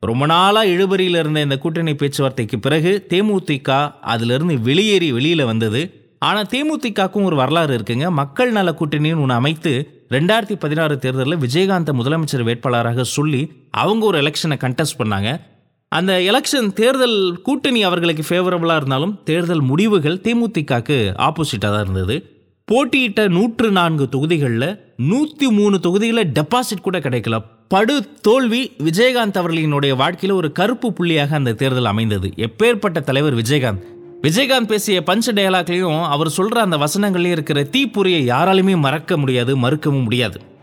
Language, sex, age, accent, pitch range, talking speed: Tamil, male, 20-39, native, 130-190 Hz, 120 wpm